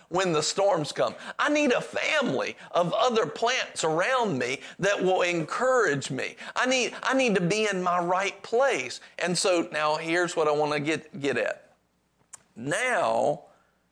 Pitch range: 135-205 Hz